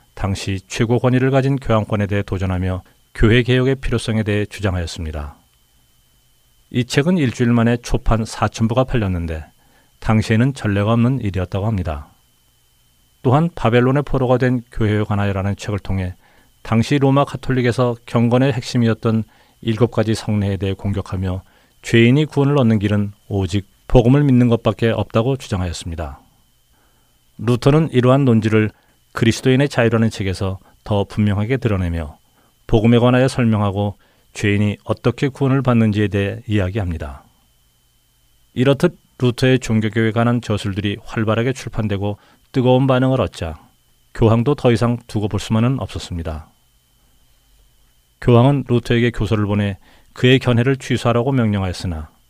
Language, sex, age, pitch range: Korean, male, 40-59, 95-125 Hz